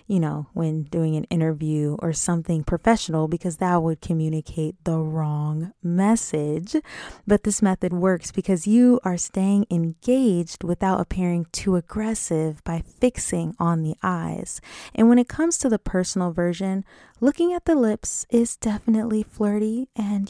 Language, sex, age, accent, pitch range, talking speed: English, female, 20-39, American, 170-225 Hz, 150 wpm